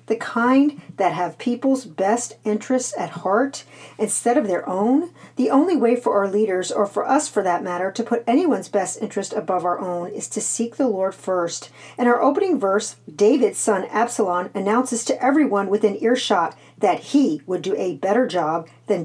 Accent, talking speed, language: American, 185 wpm, English